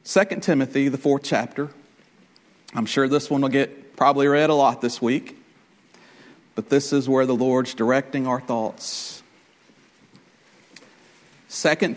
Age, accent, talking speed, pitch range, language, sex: 50-69, American, 135 wpm, 140-210 Hz, English, male